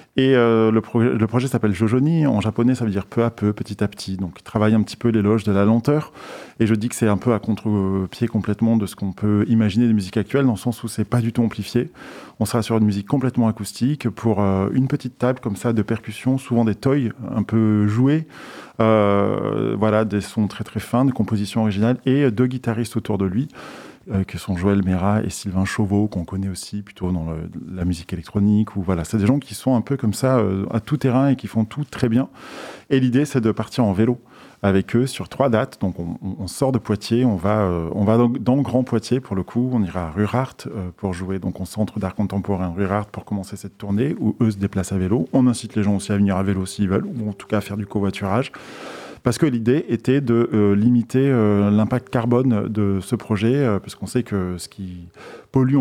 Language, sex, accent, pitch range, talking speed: French, male, French, 100-120 Hz, 245 wpm